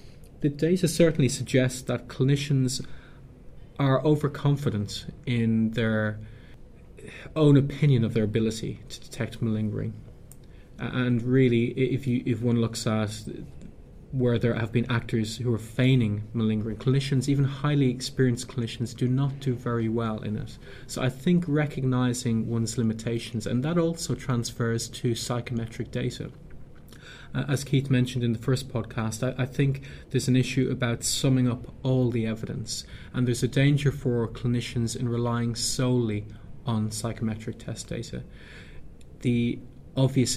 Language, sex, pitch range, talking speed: English, male, 115-130 Hz, 140 wpm